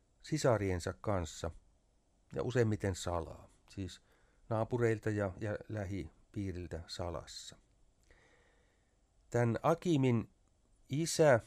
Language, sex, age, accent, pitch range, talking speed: Finnish, male, 60-79, native, 95-115 Hz, 70 wpm